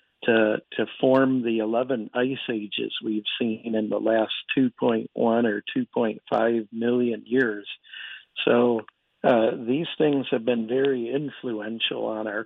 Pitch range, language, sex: 110-130 Hz, English, male